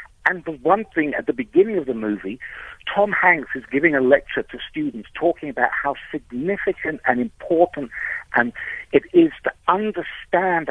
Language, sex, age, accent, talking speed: English, male, 60-79, British, 155 wpm